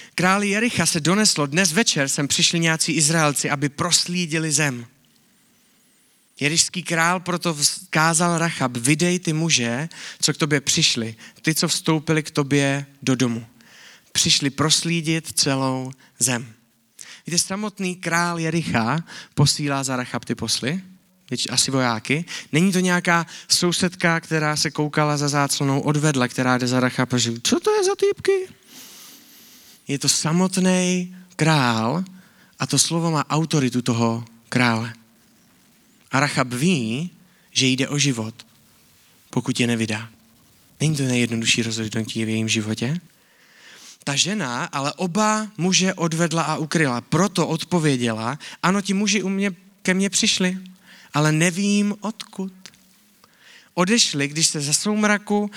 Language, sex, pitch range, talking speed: Czech, male, 130-185 Hz, 130 wpm